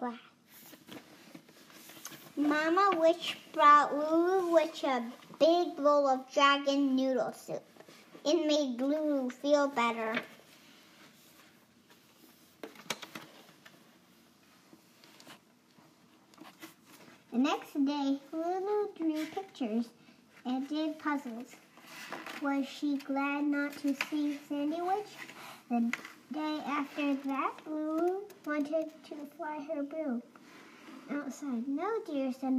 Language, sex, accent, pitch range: English, male, American, 265-320 Hz